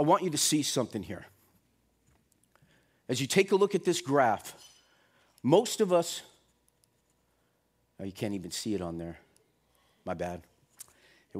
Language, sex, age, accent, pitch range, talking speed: English, male, 40-59, American, 150-220 Hz, 155 wpm